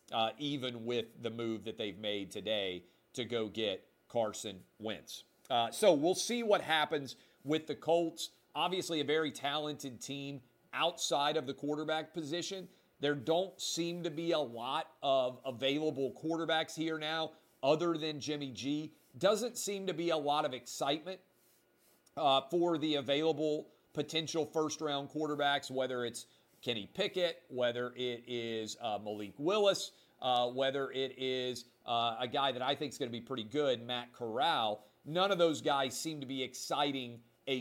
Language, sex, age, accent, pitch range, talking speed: English, male, 40-59, American, 120-155 Hz, 160 wpm